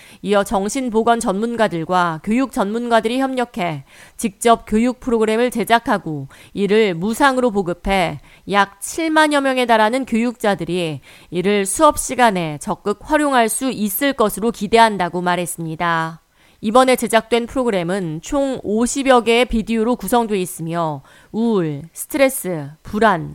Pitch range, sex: 180-245 Hz, female